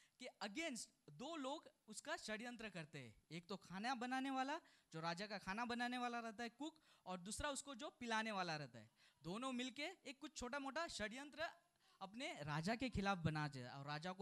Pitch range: 185-260 Hz